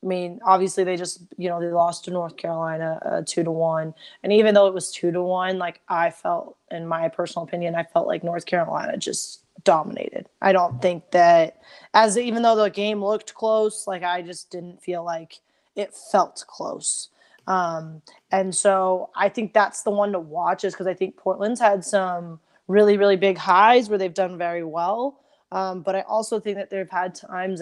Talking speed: 200 wpm